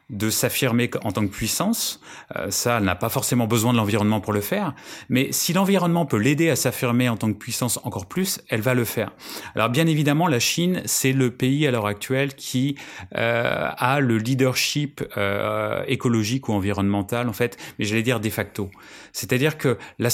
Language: French